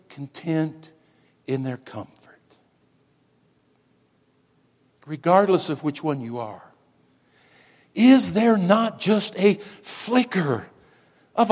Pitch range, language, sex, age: 165-230 Hz, English, male, 60-79